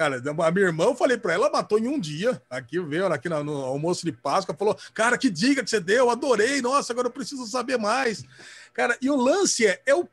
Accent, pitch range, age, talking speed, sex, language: Brazilian, 200-300 Hz, 40-59, 250 wpm, male, Portuguese